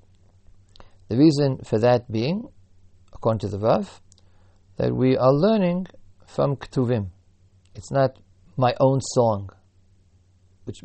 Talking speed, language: 115 wpm, English